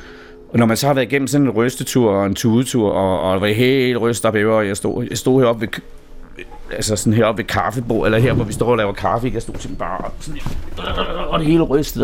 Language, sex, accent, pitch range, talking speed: Danish, male, native, 100-130 Hz, 235 wpm